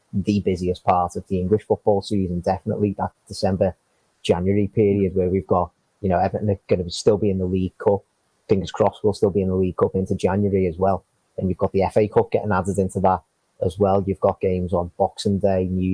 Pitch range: 95-105 Hz